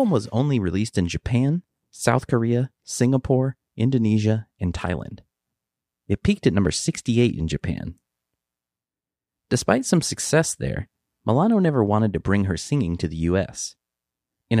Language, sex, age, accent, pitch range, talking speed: English, male, 30-49, American, 85-120 Hz, 135 wpm